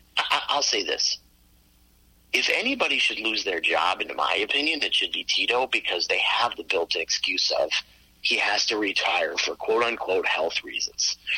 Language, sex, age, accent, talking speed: English, male, 30-49, American, 165 wpm